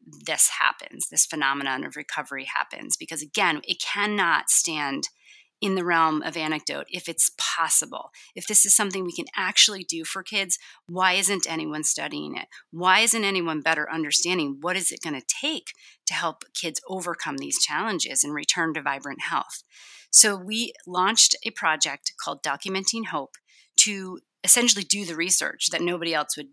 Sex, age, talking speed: female, 30-49, 165 wpm